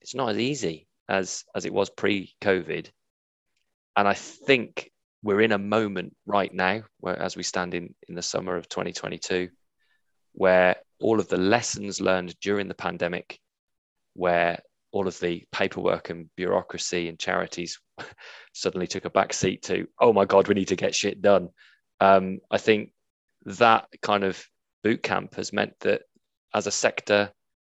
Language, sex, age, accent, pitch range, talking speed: English, male, 20-39, British, 95-110 Hz, 165 wpm